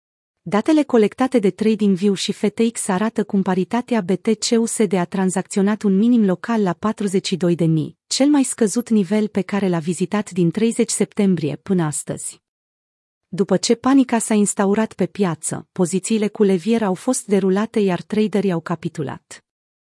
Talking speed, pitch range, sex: 140 wpm, 175-220 Hz, female